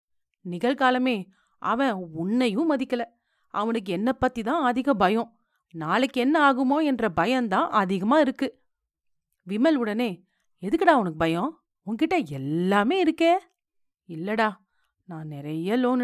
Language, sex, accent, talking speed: Tamil, female, native, 110 wpm